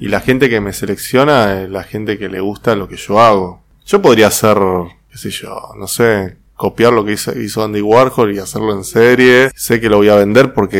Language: Spanish